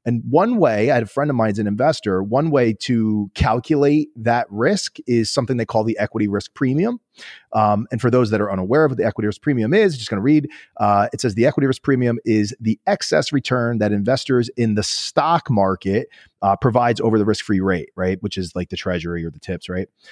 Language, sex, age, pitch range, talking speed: English, male, 30-49, 105-135 Hz, 235 wpm